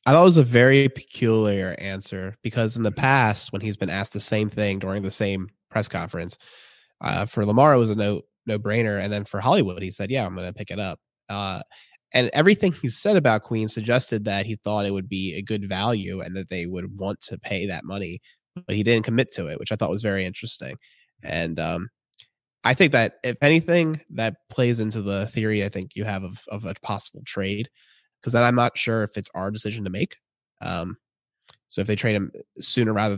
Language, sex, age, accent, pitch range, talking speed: English, male, 20-39, American, 100-120 Hz, 225 wpm